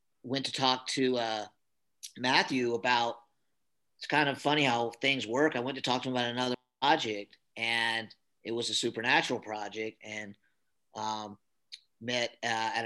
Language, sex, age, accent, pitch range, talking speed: English, male, 40-59, American, 115-145 Hz, 160 wpm